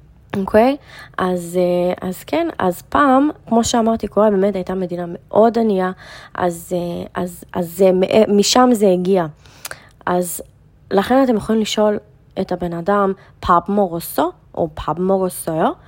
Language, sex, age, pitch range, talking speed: Hebrew, female, 20-39, 175-220 Hz, 130 wpm